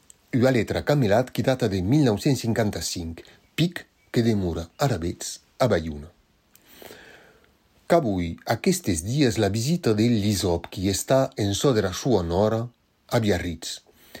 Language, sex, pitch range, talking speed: French, male, 100-130 Hz, 145 wpm